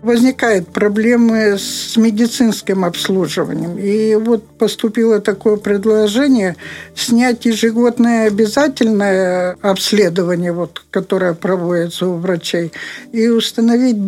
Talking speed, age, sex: 90 wpm, 50-69, male